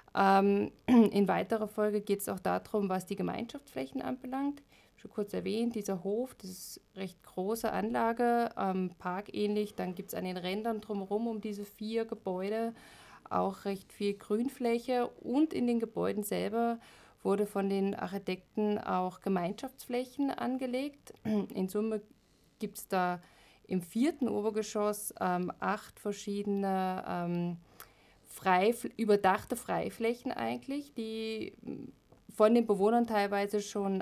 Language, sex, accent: German, female, German